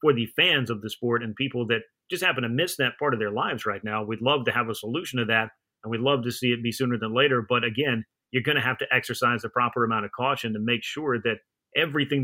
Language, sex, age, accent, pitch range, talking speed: English, male, 30-49, American, 115-130 Hz, 275 wpm